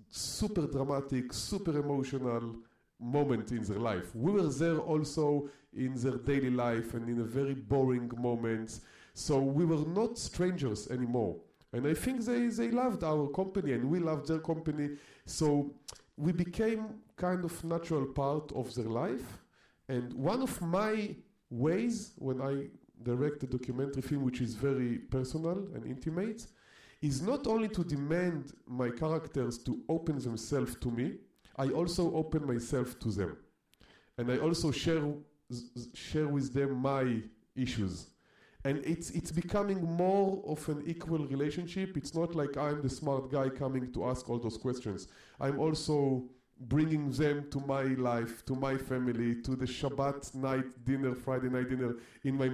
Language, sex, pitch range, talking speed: English, male, 125-160 Hz, 160 wpm